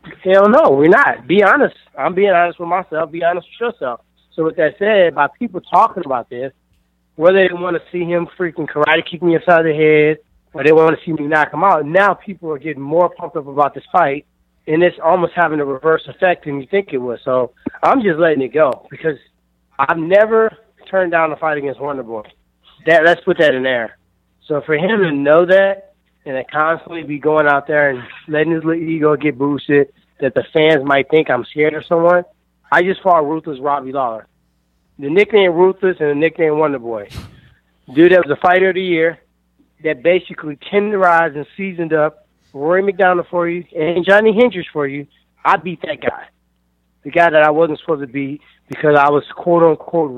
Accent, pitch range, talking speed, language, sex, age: American, 140-175 Hz, 205 wpm, English, male, 30-49